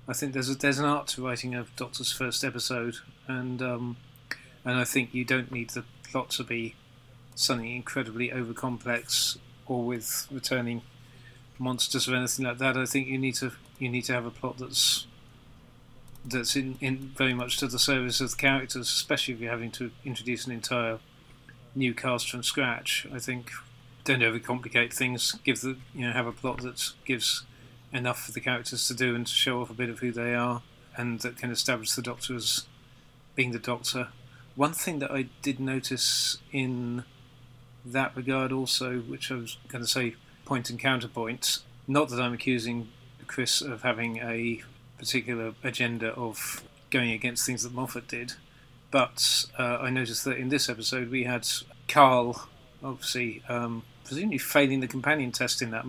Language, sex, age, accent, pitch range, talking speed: English, male, 30-49, British, 120-130 Hz, 180 wpm